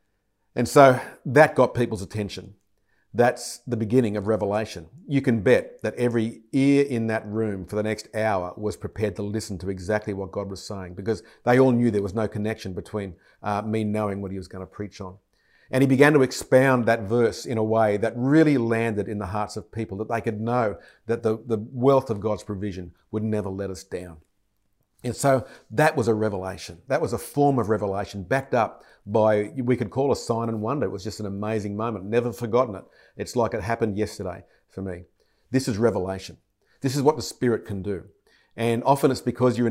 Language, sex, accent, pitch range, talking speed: English, male, Australian, 100-120 Hz, 210 wpm